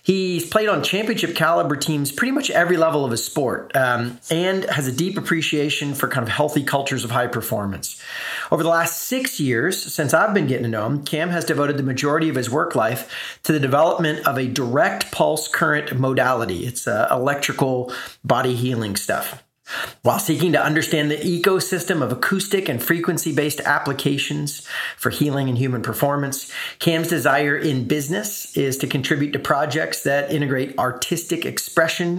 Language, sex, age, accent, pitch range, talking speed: English, male, 40-59, American, 125-165 Hz, 170 wpm